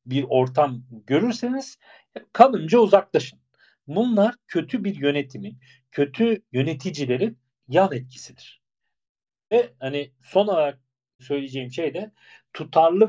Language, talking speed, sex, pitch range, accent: English, 95 wpm, male, 135-195 Hz, Turkish